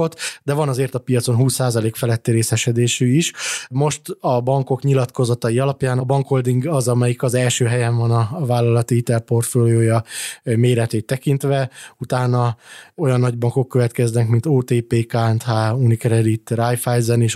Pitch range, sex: 115-130 Hz, male